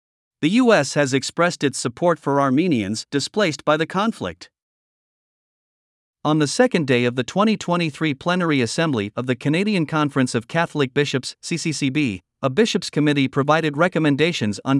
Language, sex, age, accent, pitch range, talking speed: English, male, 50-69, American, 135-175 Hz, 140 wpm